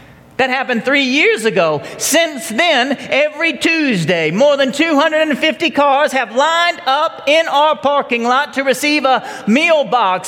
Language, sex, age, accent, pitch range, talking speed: English, male, 40-59, American, 230-305 Hz, 145 wpm